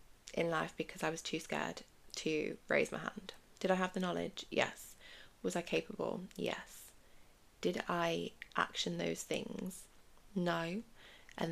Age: 20-39